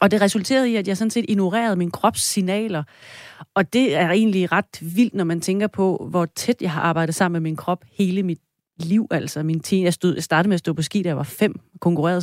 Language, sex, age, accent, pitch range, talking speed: Danish, female, 30-49, native, 165-205 Hz, 230 wpm